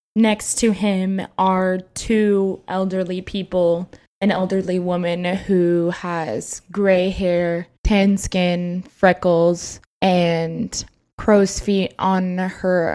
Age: 20-39